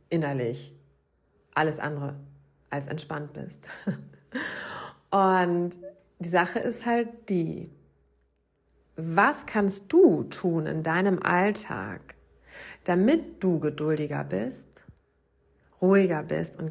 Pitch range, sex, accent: 170-205 Hz, female, German